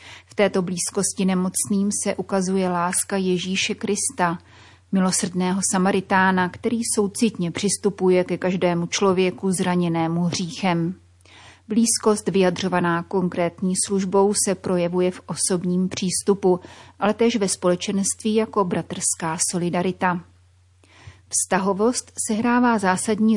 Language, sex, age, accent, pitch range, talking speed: Czech, female, 30-49, native, 180-200 Hz, 100 wpm